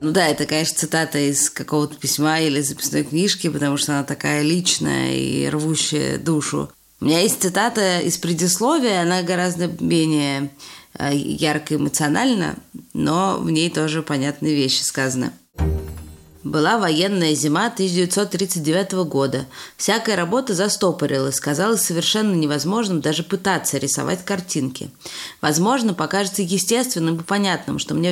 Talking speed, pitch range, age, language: 125 wpm, 150-205 Hz, 20-39, Russian